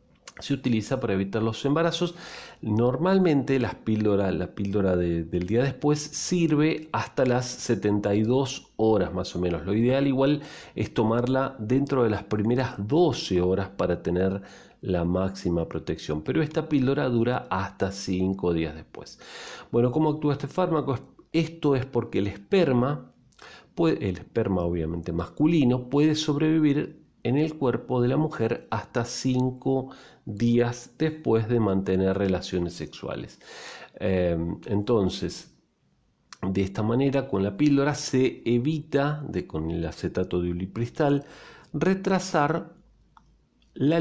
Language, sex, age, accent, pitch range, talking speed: Spanish, male, 40-59, Argentinian, 95-140 Hz, 125 wpm